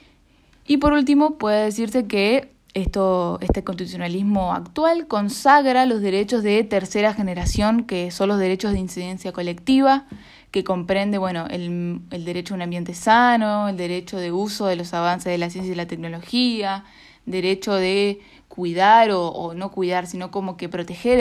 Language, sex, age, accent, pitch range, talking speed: Spanish, female, 10-29, Argentinian, 175-210 Hz, 160 wpm